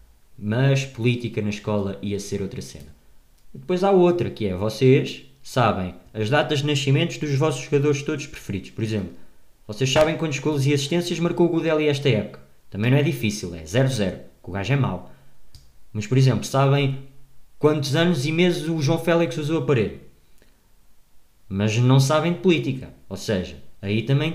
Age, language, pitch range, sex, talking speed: 20-39, Portuguese, 105-160 Hz, male, 180 wpm